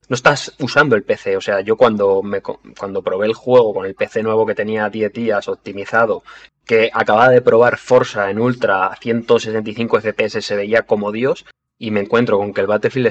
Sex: male